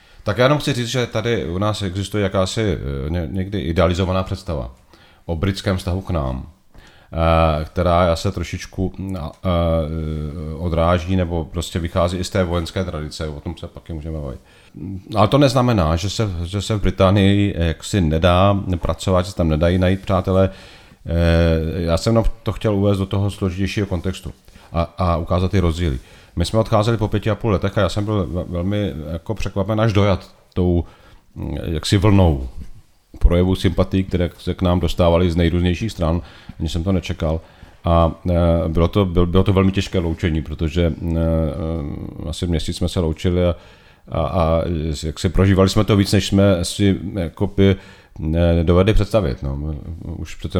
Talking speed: 160 wpm